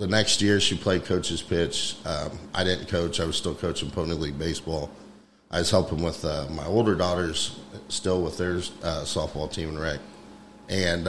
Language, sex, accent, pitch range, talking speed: English, male, American, 80-95 Hz, 190 wpm